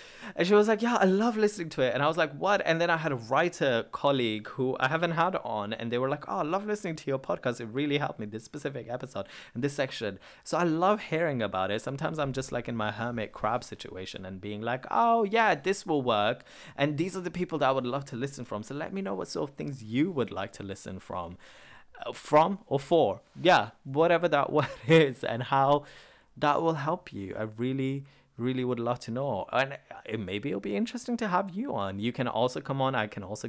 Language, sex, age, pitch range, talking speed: English, male, 20-39, 105-150 Hz, 245 wpm